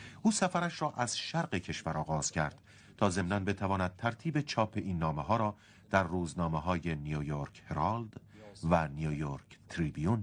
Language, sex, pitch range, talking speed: Persian, male, 85-120 Hz, 145 wpm